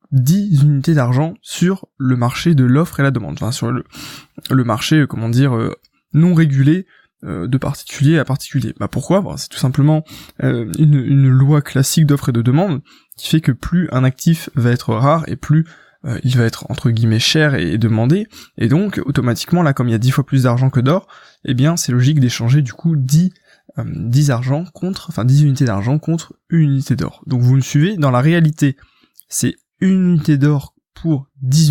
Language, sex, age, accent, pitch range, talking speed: French, male, 20-39, French, 125-155 Hz, 200 wpm